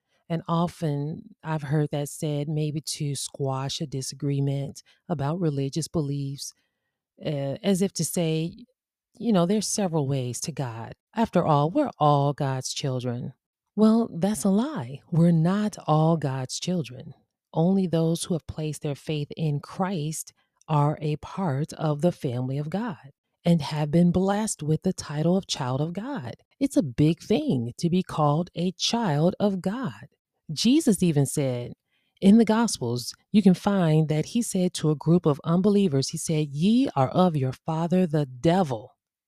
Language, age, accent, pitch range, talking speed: English, 30-49, American, 145-195 Hz, 160 wpm